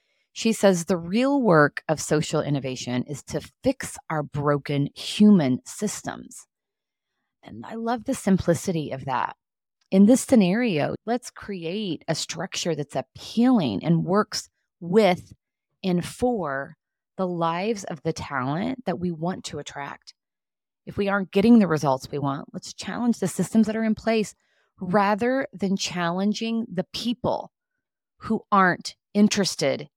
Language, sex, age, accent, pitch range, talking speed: English, female, 30-49, American, 150-210 Hz, 140 wpm